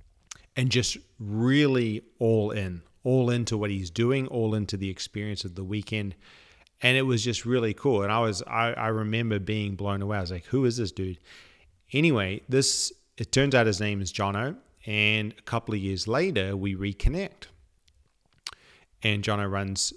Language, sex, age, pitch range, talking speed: English, male, 30-49, 100-115 Hz, 175 wpm